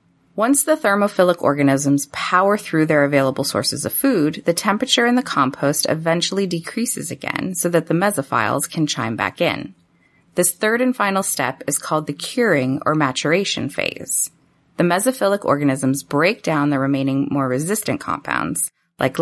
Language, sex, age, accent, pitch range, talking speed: English, female, 30-49, American, 140-190 Hz, 155 wpm